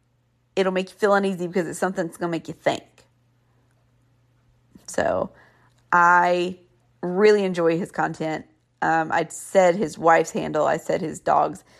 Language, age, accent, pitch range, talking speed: English, 40-59, American, 155-185 Hz, 155 wpm